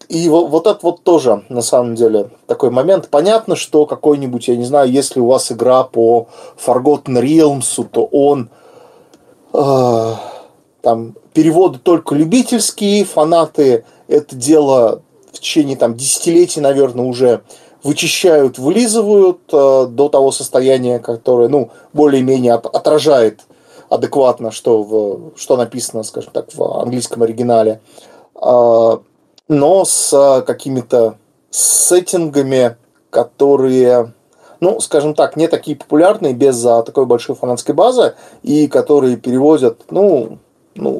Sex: male